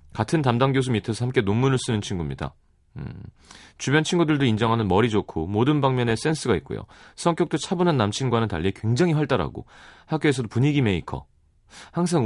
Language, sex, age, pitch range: Korean, male, 30-49, 100-150 Hz